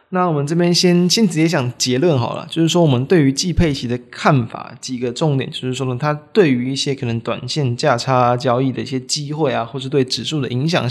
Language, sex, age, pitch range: Chinese, male, 20-39, 125-160 Hz